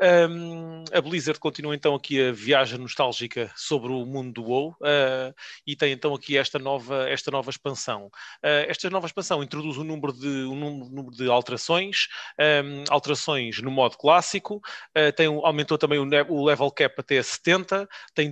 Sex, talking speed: male, 140 wpm